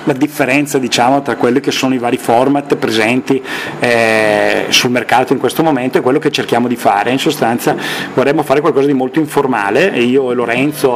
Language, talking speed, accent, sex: Italian, 185 wpm, native, male